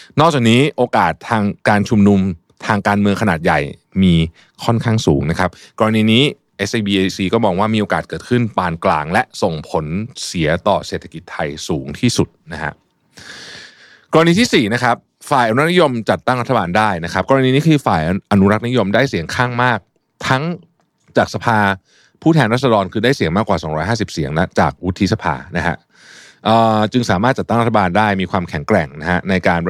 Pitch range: 90-115 Hz